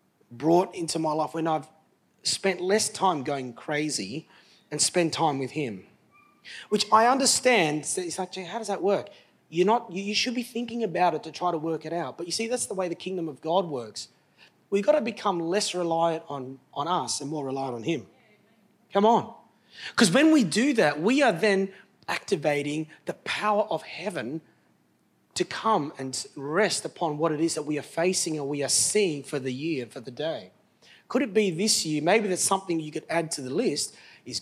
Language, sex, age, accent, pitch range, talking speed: English, male, 30-49, Australian, 150-210 Hz, 205 wpm